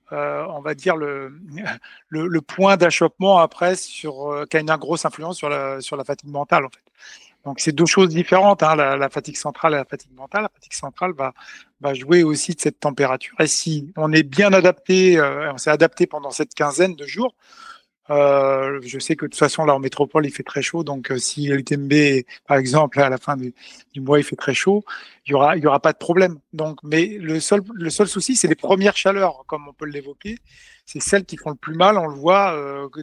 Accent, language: French, French